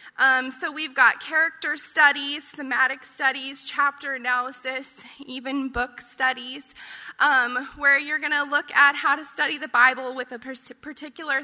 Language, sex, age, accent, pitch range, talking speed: English, female, 20-39, American, 255-295 Hz, 150 wpm